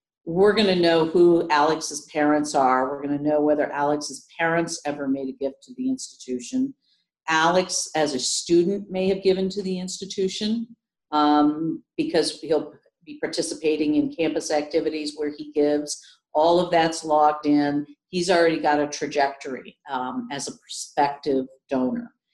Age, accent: 50-69, American